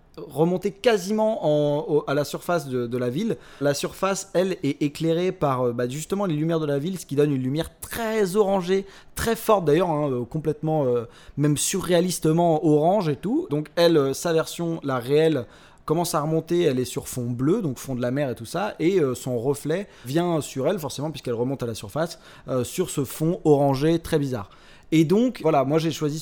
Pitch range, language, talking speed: 130-165 Hz, French, 210 wpm